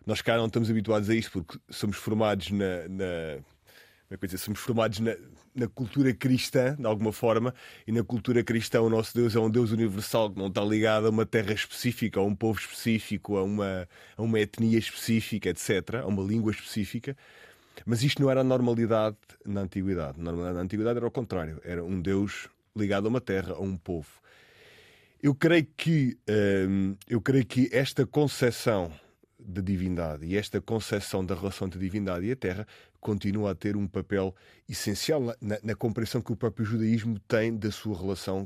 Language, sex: Portuguese, male